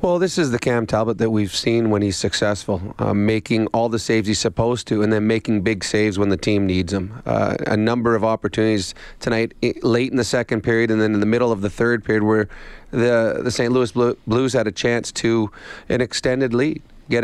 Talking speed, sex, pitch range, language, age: 225 wpm, male, 110-120 Hz, English, 30-49